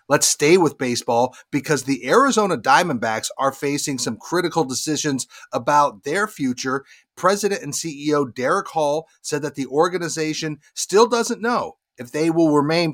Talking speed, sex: 150 wpm, male